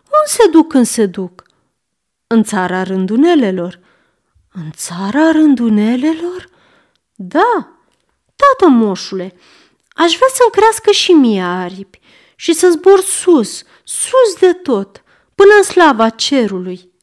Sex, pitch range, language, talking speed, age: female, 200-320 Hz, Romanian, 115 wpm, 30-49